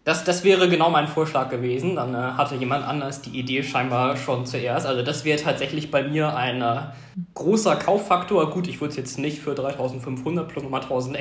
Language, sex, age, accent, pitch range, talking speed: German, male, 20-39, German, 125-155 Hz, 205 wpm